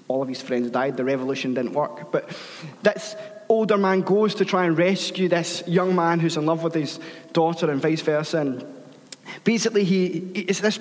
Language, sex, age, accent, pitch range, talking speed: English, male, 20-39, British, 160-200 Hz, 195 wpm